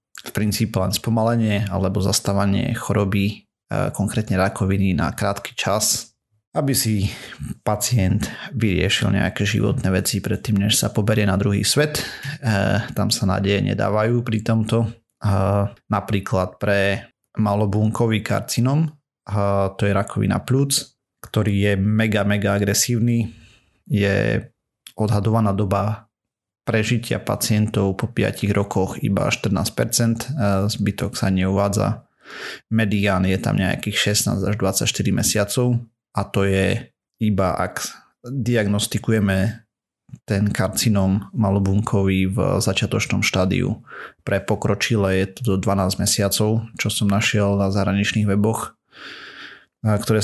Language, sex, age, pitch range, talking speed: Slovak, male, 30-49, 100-115 Hz, 110 wpm